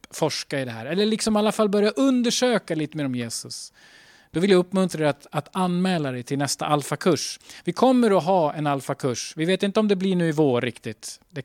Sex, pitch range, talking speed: male, 135-185 Hz, 230 wpm